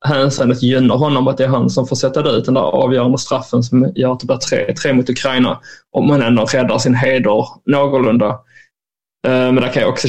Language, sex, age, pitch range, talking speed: Swedish, male, 20-39, 125-130 Hz, 210 wpm